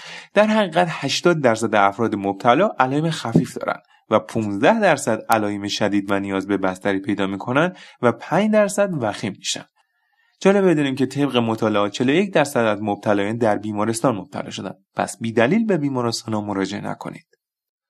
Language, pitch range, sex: Persian, 100-150 Hz, male